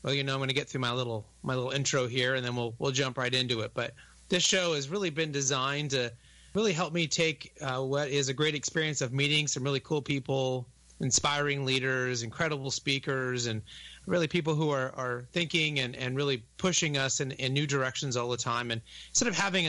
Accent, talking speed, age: American, 225 wpm, 30-49